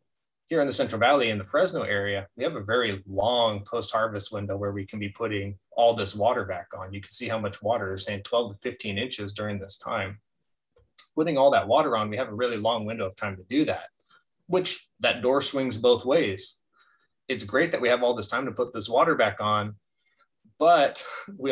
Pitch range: 100-120 Hz